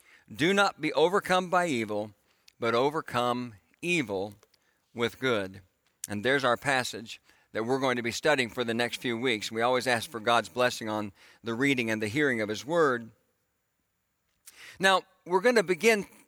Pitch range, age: 120-190 Hz, 50-69